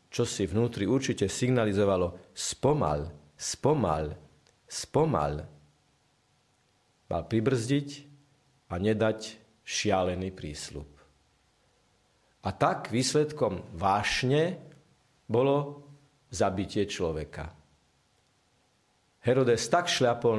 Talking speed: 70 wpm